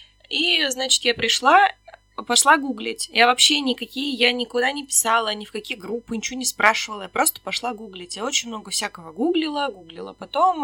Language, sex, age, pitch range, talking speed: Russian, female, 20-39, 205-260 Hz, 175 wpm